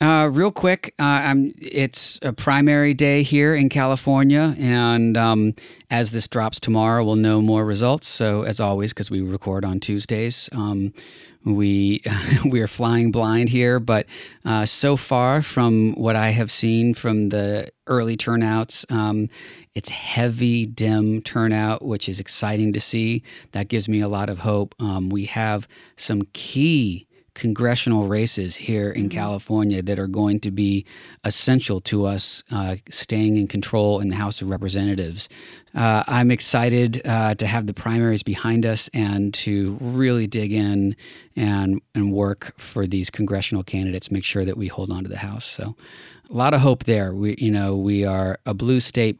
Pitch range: 100-115 Hz